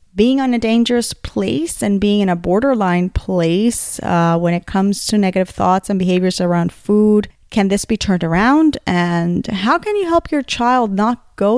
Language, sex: English, female